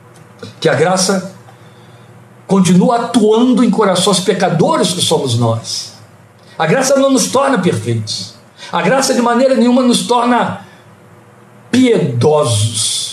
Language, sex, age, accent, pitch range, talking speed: Portuguese, male, 60-79, Brazilian, 120-175 Hz, 115 wpm